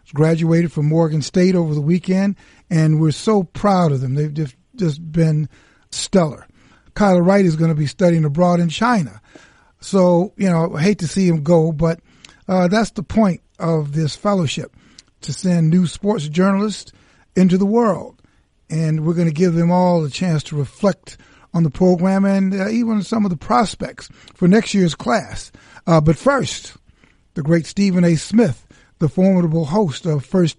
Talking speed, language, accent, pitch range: 180 wpm, English, American, 160-195 Hz